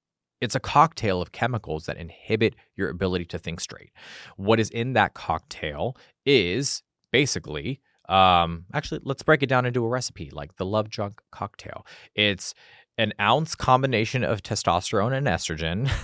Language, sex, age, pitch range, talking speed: English, male, 30-49, 85-110 Hz, 155 wpm